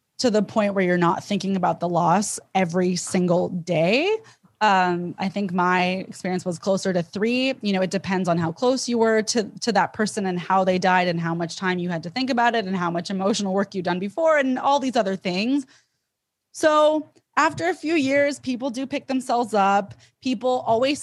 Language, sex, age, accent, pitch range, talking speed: English, female, 20-39, American, 185-245 Hz, 210 wpm